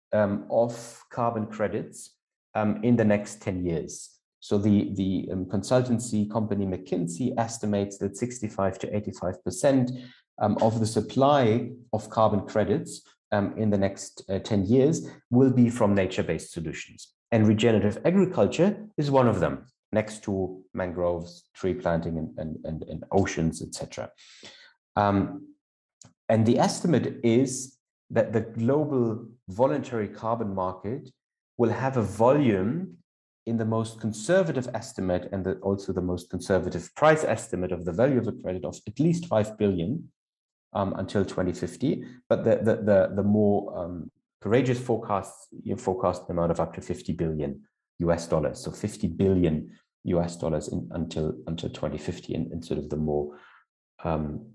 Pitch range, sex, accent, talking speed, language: 95-115 Hz, male, German, 150 wpm, English